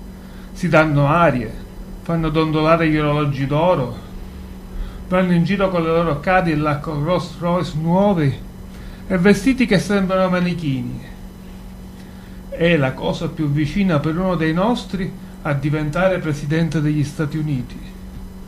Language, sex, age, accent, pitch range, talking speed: Italian, male, 40-59, native, 140-180 Hz, 125 wpm